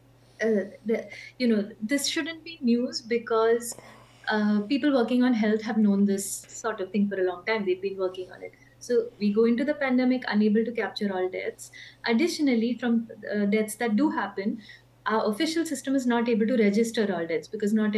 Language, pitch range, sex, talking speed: Hindi, 200-235 Hz, female, 195 wpm